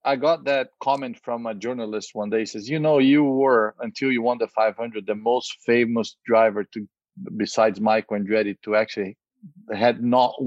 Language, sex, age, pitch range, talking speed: English, male, 40-59, 105-125 Hz, 185 wpm